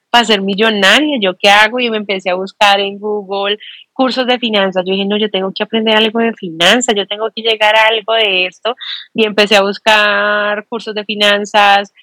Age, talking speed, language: 30-49, 205 wpm, Spanish